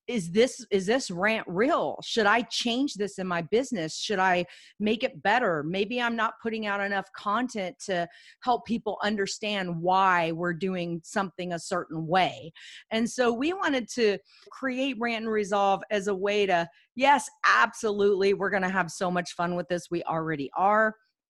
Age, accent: 30-49, American